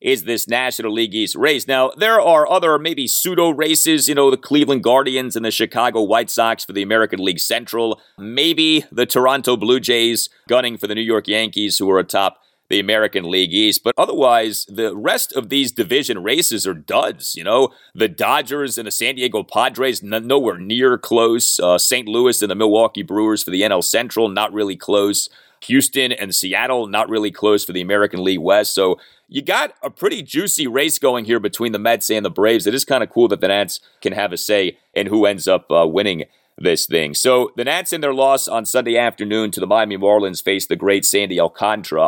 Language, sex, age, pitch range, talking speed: English, male, 30-49, 105-135 Hz, 210 wpm